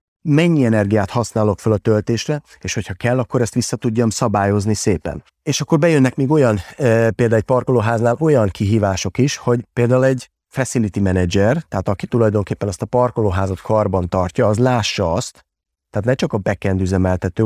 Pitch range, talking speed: 100-125 Hz, 165 wpm